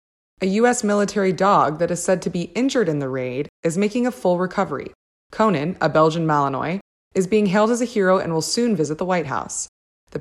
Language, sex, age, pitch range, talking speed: English, female, 20-39, 160-210 Hz, 210 wpm